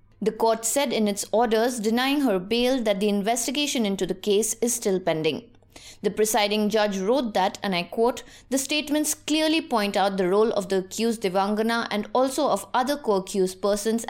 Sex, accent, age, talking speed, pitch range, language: female, Indian, 20-39, 185 wpm, 190-250 Hz, English